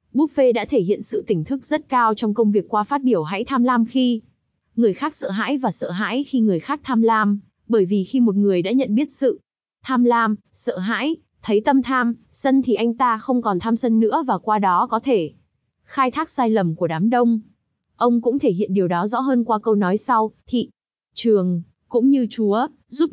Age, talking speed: 20-39, 225 wpm